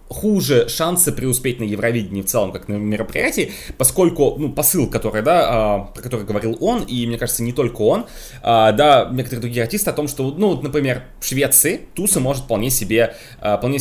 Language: Russian